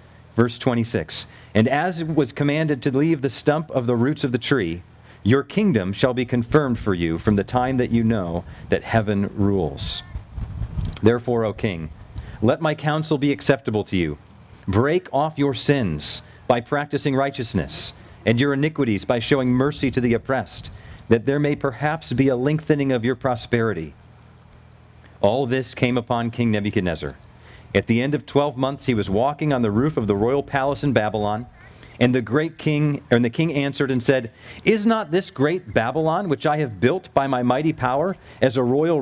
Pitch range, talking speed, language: 115-145 Hz, 185 wpm, English